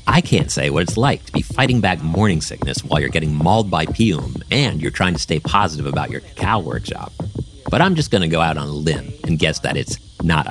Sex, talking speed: male, 245 wpm